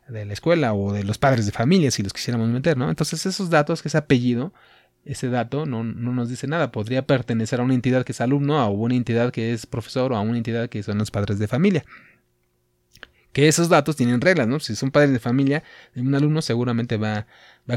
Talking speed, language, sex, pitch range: 225 wpm, Spanish, male, 110-135 Hz